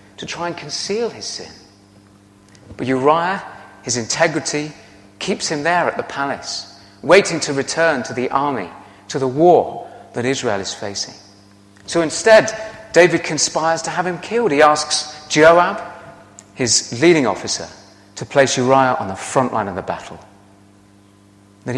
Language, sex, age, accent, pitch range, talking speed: English, male, 30-49, British, 100-160 Hz, 150 wpm